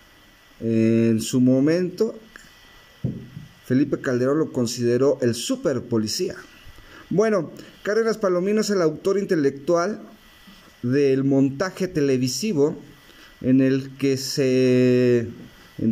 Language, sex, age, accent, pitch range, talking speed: Spanish, male, 40-59, Mexican, 125-170 Hz, 90 wpm